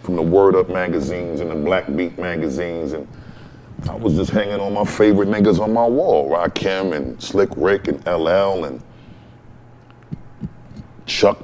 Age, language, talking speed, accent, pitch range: 30-49, English, 155 wpm, American, 85-100 Hz